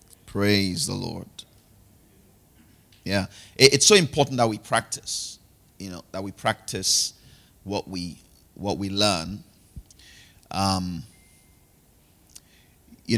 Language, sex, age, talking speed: English, male, 30-49, 100 wpm